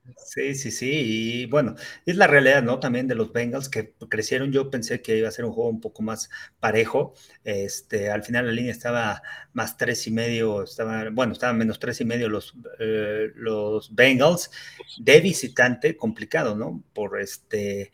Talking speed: 180 wpm